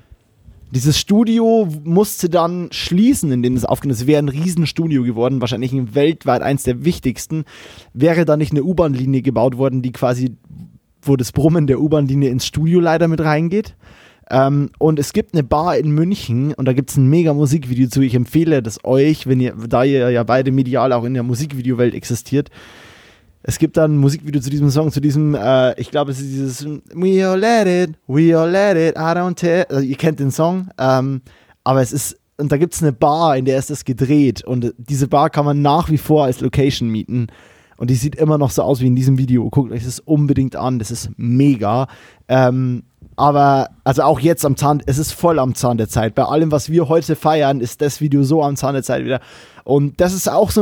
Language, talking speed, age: German, 210 wpm, 20-39